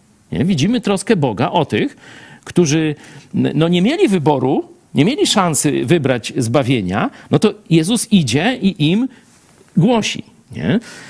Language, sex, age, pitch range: Polish, male, 50-69, 130-200 Hz